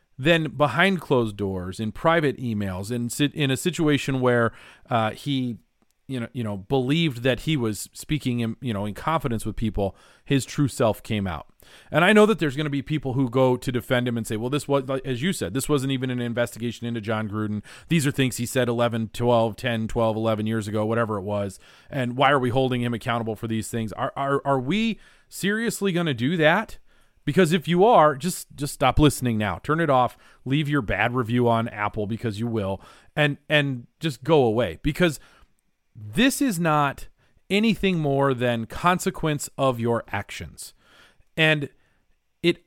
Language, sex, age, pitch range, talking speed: English, male, 40-59, 115-155 Hz, 195 wpm